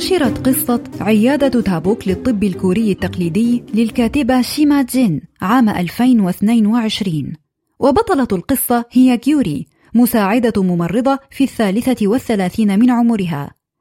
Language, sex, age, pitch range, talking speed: Arabic, female, 20-39, 195-255 Hz, 95 wpm